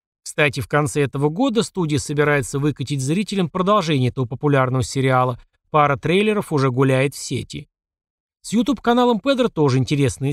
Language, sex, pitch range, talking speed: Russian, male, 135-175 Hz, 145 wpm